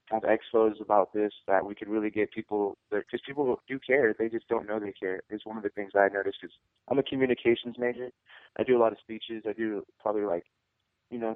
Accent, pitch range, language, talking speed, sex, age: American, 100-110 Hz, English, 240 wpm, male, 20-39